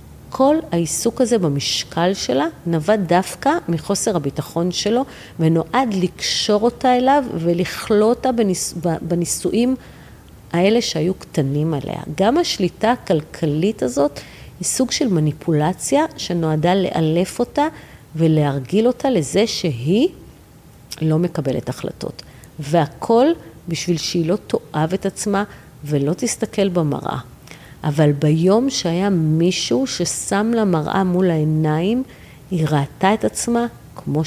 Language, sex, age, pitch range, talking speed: Hebrew, female, 40-59, 155-215 Hz, 110 wpm